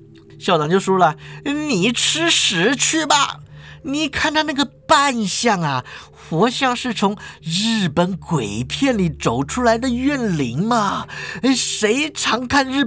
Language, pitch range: Chinese, 150-235 Hz